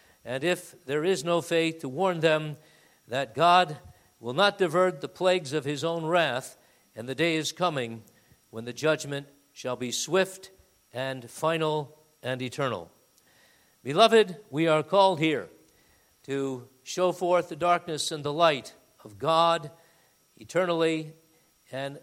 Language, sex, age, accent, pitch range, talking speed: English, male, 50-69, American, 125-160 Hz, 140 wpm